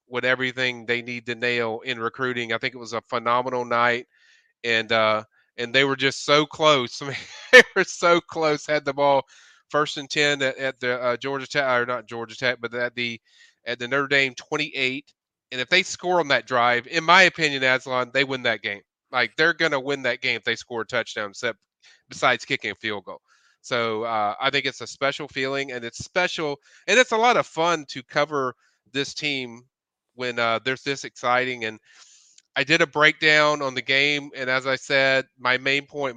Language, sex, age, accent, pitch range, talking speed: English, male, 30-49, American, 120-140 Hz, 205 wpm